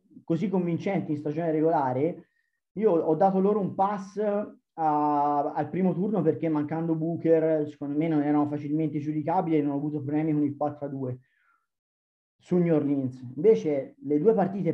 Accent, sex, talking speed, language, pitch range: native, male, 155 wpm, Italian, 145-165 Hz